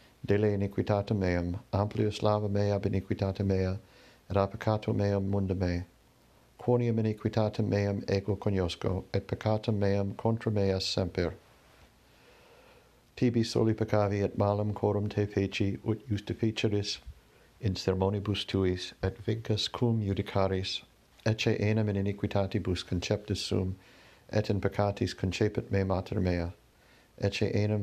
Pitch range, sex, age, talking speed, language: 95-105 Hz, male, 60-79, 120 wpm, English